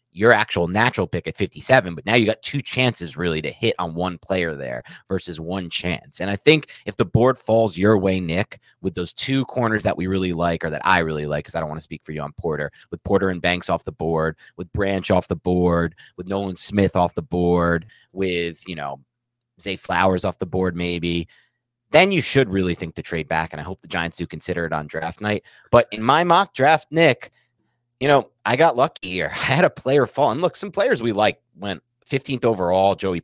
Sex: male